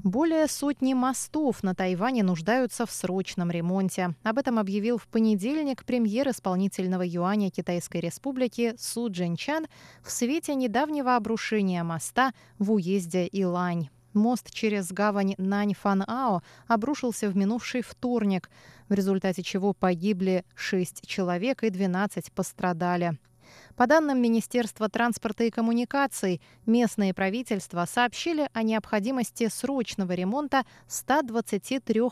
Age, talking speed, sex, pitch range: 20-39, 110 wpm, female, 185-245 Hz